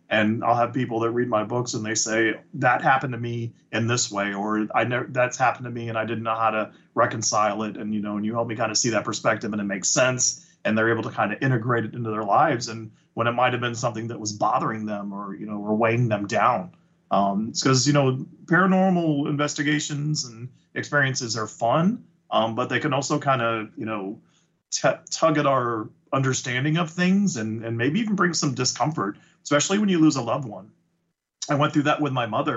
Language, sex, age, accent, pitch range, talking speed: English, male, 30-49, American, 110-145 Hz, 230 wpm